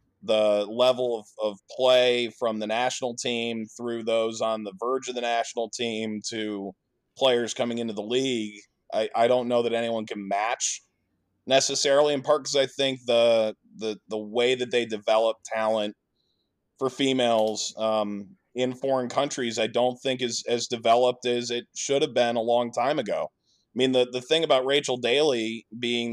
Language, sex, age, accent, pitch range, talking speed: English, male, 20-39, American, 110-130 Hz, 175 wpm